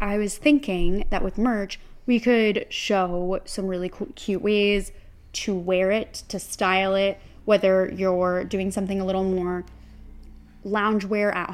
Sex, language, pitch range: female, English, 190-240 Hz